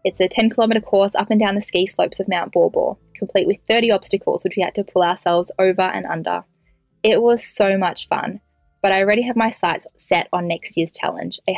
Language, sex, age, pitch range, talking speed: English, female, 10-29, 185-220 Hz, 225 wpm